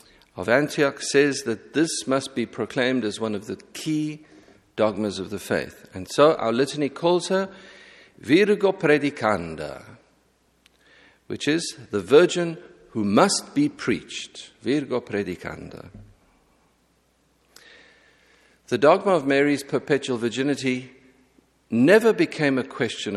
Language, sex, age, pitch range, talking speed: English, male, 50-69, 105-170 Hz, 115 wpm